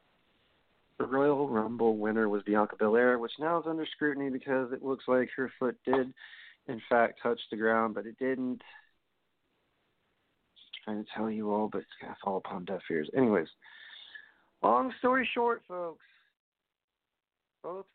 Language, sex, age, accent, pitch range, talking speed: English, male, 40-59, American, 115-145 Hz, 160 wpm